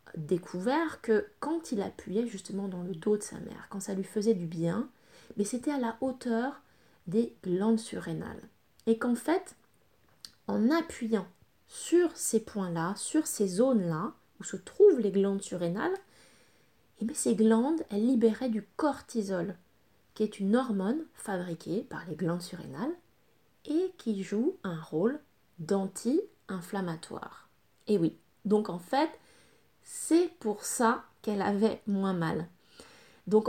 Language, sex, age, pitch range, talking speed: French, female, 20-39, 190-235 Hz, 140 wpm